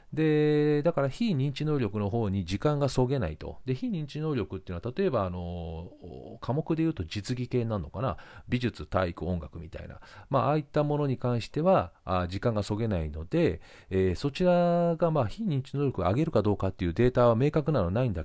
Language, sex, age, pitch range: Japanese, male, 40-59, 90-155 Hz